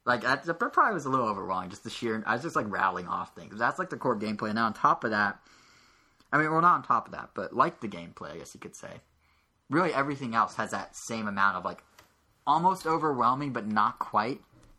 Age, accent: 20-39, American